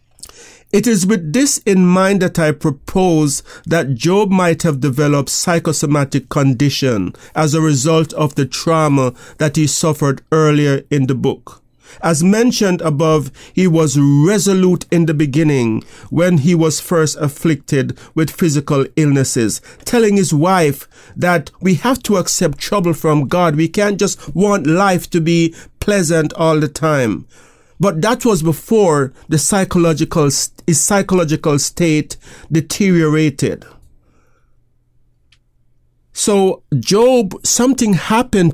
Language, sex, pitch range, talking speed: English, male, 140-185 Hz, 130 wpm